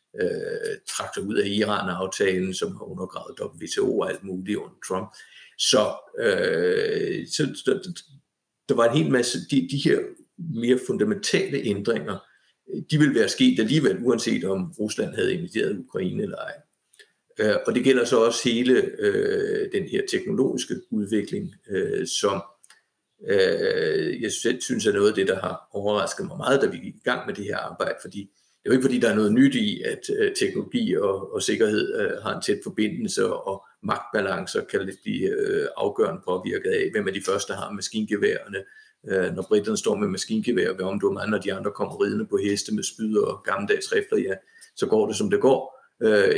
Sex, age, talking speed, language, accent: male, 50-69, 185 wpm, Danish, native